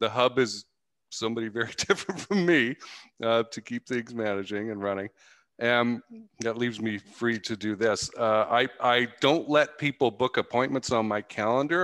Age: 40-59